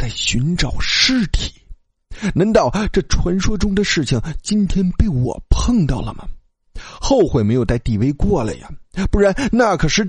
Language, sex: Chinese, male